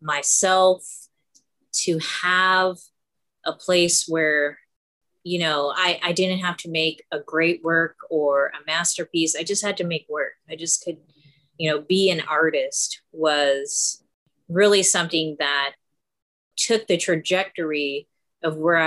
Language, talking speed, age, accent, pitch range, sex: English, 135 wpm, 30-49, American, 150-180 Hz, female